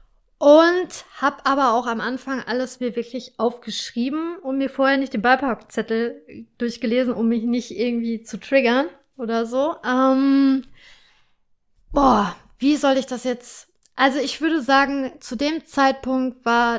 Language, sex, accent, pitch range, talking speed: German, female, German, 230-275 Hz, 145 wpm